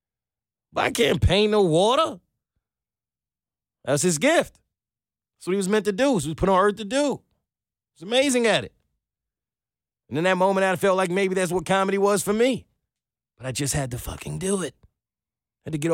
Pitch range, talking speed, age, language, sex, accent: 145-185 Hz, 200 wpm, 30-49, English, male, American